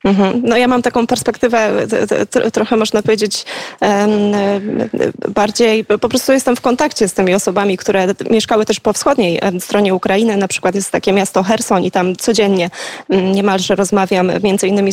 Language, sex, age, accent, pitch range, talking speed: Polish, female, 20-39, native, 185-220 Hz, 150 wpm